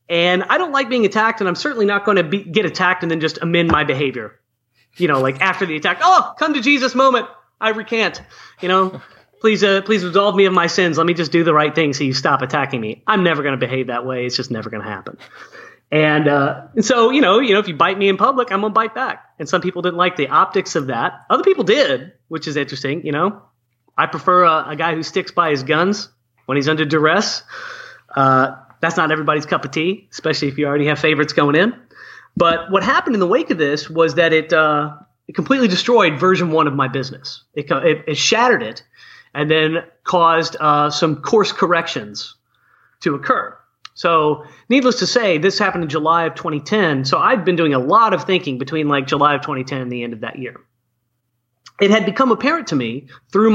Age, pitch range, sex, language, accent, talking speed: 30-49, 145-195 Hz, male, English, American, 225 wpm